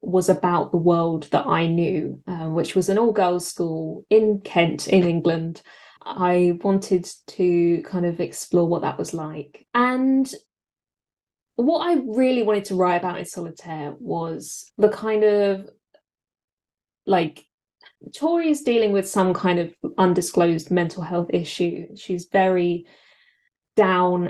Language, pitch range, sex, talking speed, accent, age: English, 175-210 Hz, female, 140 wpm, British, 20-39